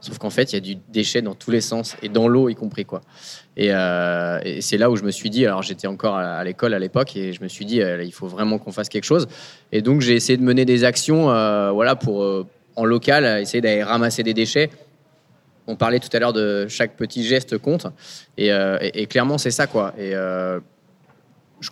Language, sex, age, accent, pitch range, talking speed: French, male, 20-39, French, 100-125 Hz, 245 wpm